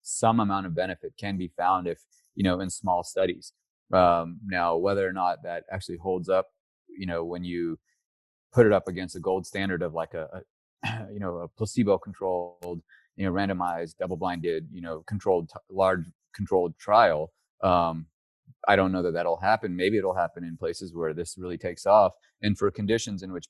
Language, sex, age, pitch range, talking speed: English, male, 30-49, 85-100 Hz, 190 wpm